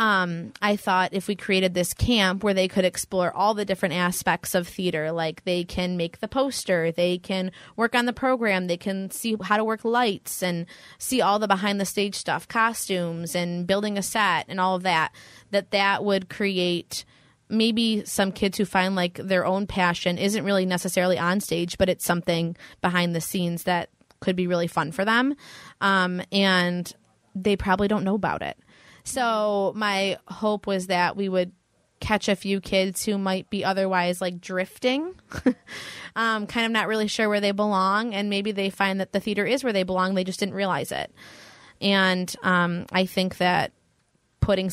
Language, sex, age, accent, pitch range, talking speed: English, female, 20-39, American, 180-205 Hz, 190 wpm